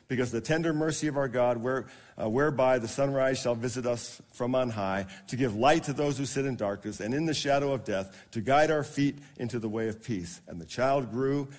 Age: 50-69